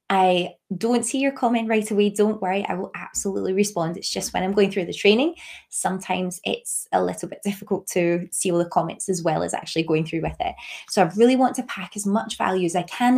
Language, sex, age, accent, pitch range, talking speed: English, female, 20-39, British, 180-220 Hz, 235 wpm